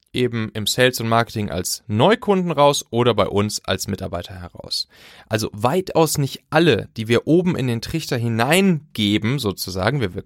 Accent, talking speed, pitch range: German, 165 wpm, 100-140 Hz